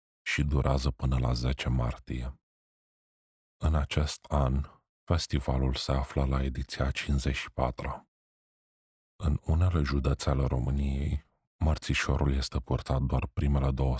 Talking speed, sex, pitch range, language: 110 wpm, male, 65-70 Hz, Romanian